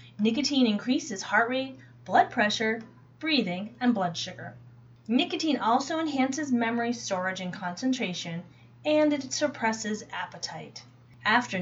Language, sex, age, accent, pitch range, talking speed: English, female, 30-49, American, 165-265 Hz, 115 wpm